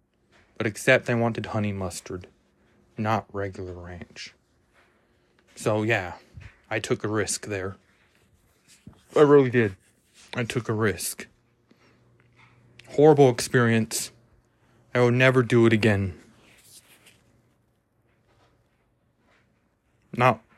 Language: English